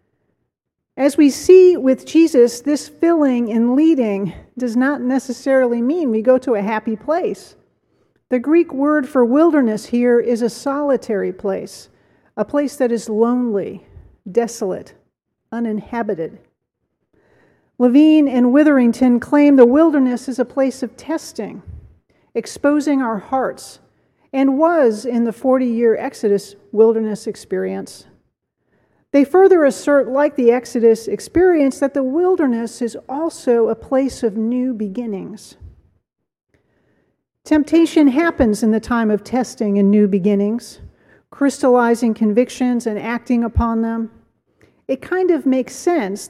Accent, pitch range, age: American, 225-280 Hz, 40-59